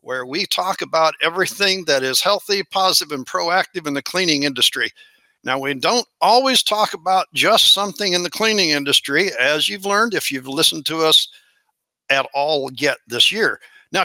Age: 60-79